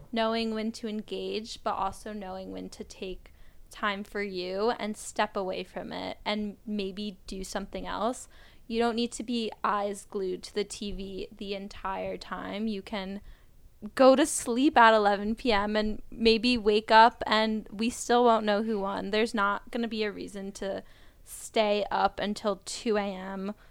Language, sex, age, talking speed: English, female, 10-29, 170 wpm